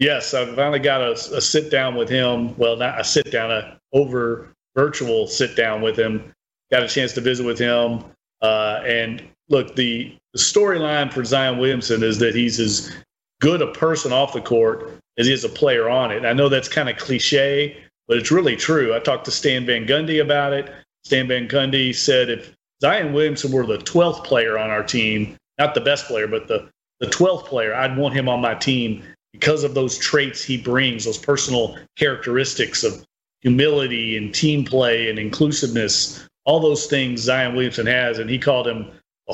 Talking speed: 190 wpm